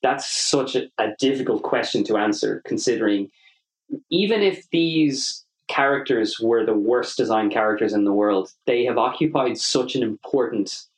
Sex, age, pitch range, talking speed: male, 20-39, 110-165 Hz, 140 wpm